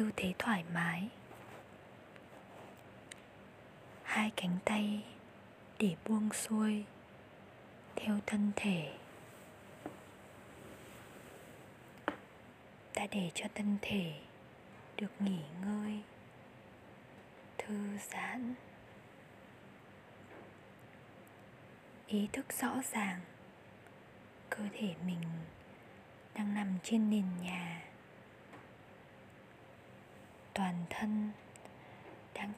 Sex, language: female, Vietnamese